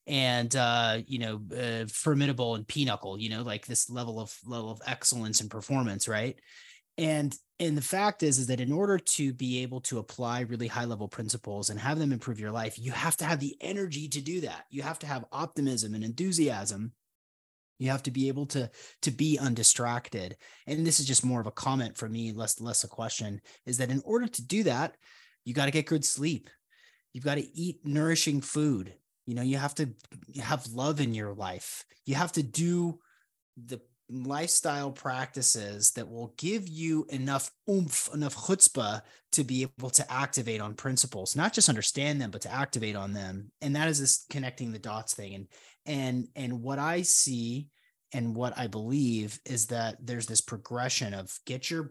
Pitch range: 115-150 Hz